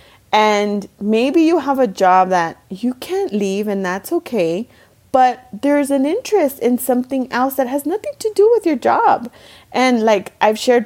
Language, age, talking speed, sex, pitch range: English, 30-49, 175 wpm, female, 195-255 Hz